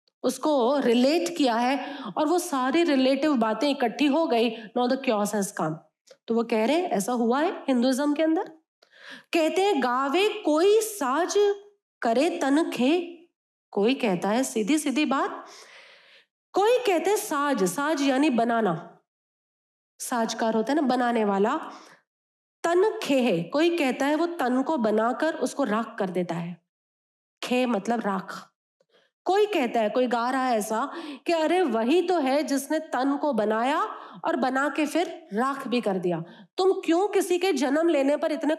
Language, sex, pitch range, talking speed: Hindi, female, 240-330 Hz, 145 wpm